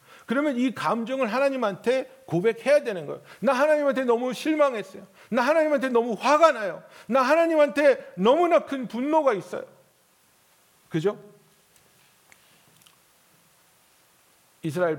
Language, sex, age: Korean, male, 50-69